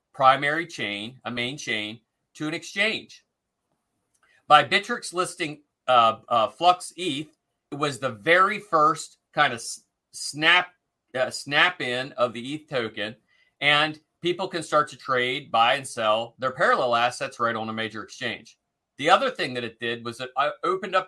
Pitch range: 120-150 Hz